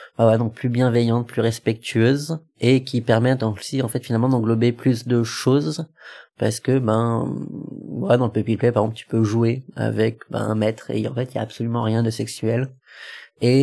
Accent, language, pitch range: French, French, 110-130 Hz